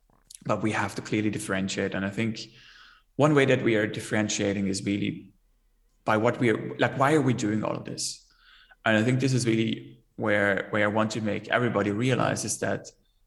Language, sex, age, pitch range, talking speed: English, male, 20-39, 100-120 Hz, 205 wpm